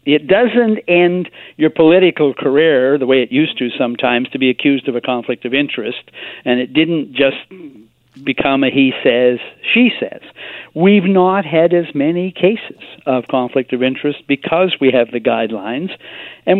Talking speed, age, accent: 165 wpm, 50-69, American